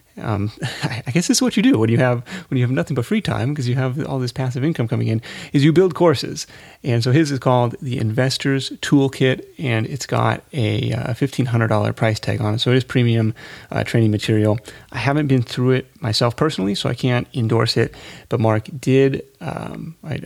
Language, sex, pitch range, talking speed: English, male, 110-135 Hz, 215 wpm